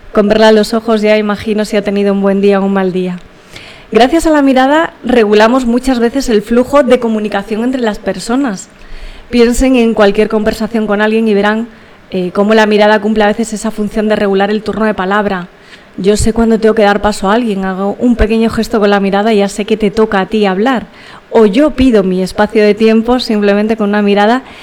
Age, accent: 30-49, Spanish